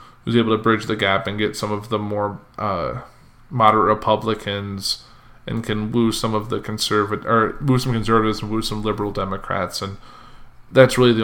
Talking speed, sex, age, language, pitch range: 185 wpm, male, 20-39, English, 105-130 Hz